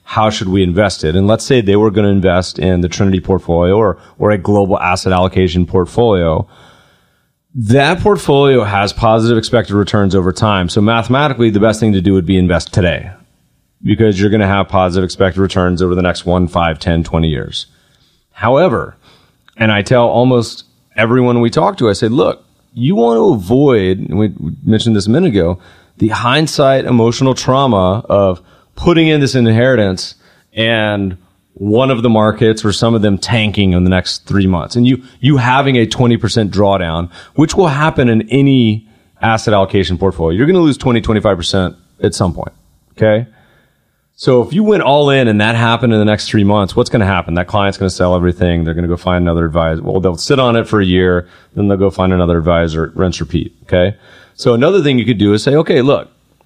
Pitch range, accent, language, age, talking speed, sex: 90-115 Hz, American, English, 30-49, 200 wpm, male